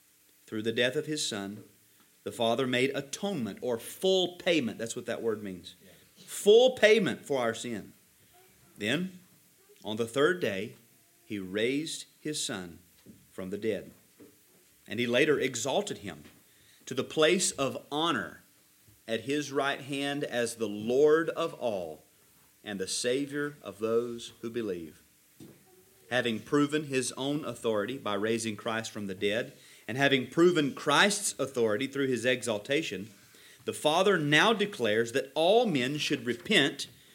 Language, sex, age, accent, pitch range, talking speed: English, male, 40-59, American, 110-145 Hz, 145 wpm